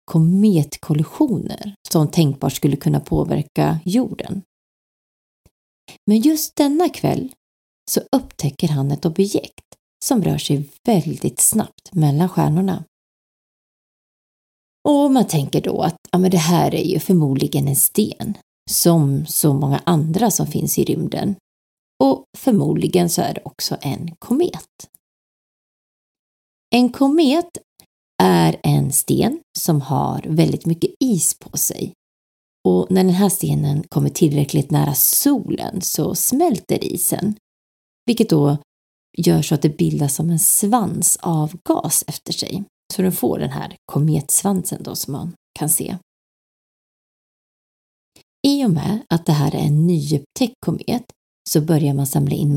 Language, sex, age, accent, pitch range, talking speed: Swedish, female, 30-49, native, 150-195 Hz, 130 wpm